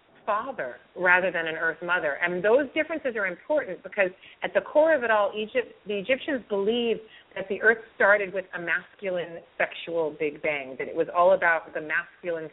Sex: female